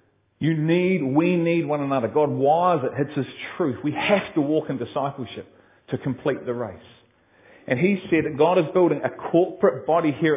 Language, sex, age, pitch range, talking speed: English, male, 40-59, 130-180 Hz, 190 wpm